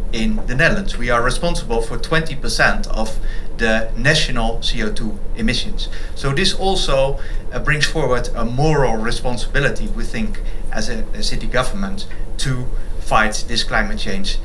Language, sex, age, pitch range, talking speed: English, male, 30-49, 105-130 Hz, 140 wpm